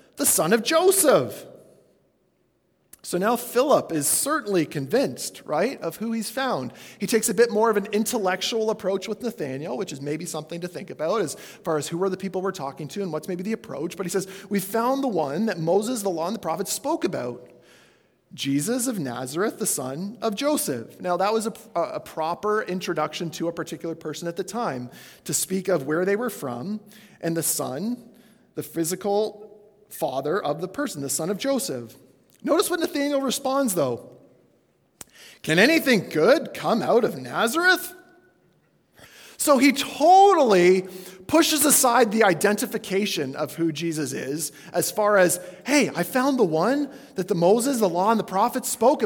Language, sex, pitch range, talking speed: English, male, 170-240 Hz, 175 wpm